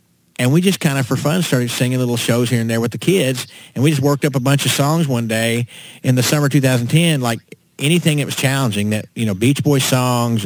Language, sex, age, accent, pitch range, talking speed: English, male, 40-59, American, 120-150 Hz, 250 wpm